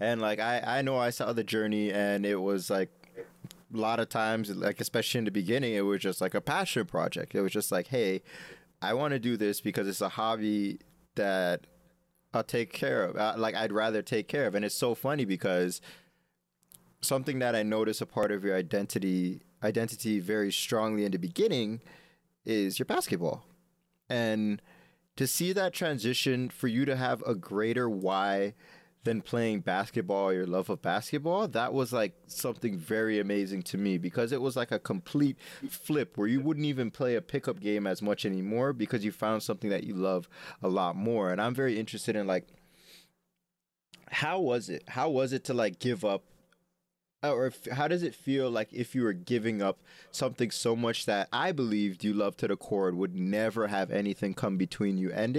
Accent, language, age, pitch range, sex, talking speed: American, English, 20-39, 100-135 Hz, male, 195 wpm